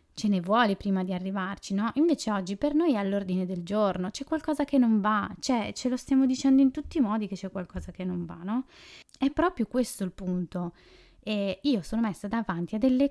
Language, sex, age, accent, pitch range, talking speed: Italian, female, 20-39, native, 185-235 Hz, 220 wpm